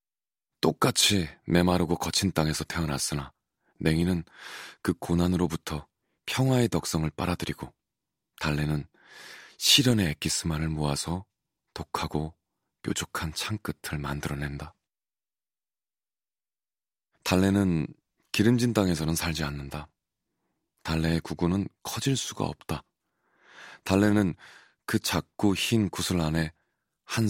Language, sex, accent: Korean, male, native